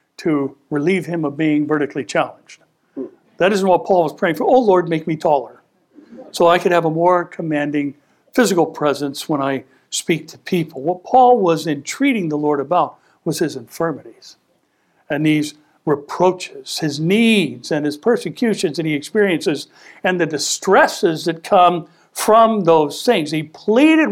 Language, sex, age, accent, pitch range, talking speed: English, male, 60-79, American, 150-205 Hz, 160 wpm